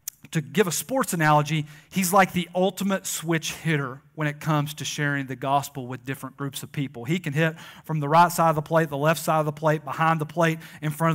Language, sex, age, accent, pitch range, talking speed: English, male, 40-59, American, 145-170 Hz, 235 wpm